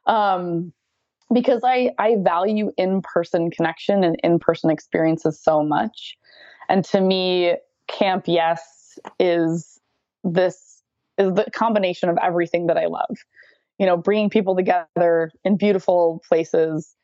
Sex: female